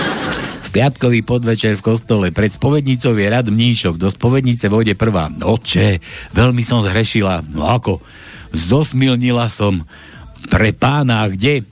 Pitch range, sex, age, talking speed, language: 105-150 Hz, male, 60-79, 125 wpm, Slovak